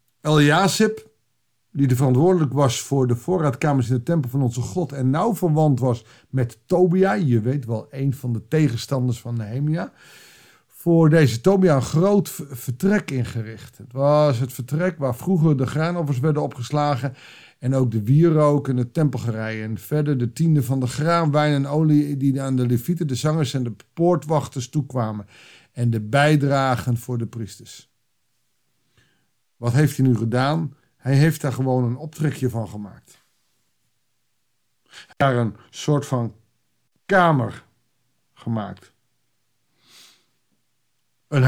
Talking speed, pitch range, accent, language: 150 wpm, 120-155 Hz, Dutch, Dutch